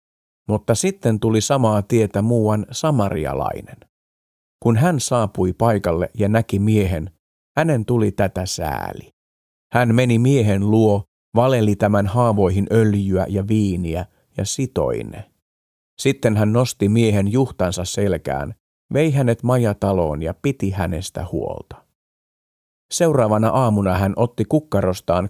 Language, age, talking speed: Finnish, 50-69, 115 wpm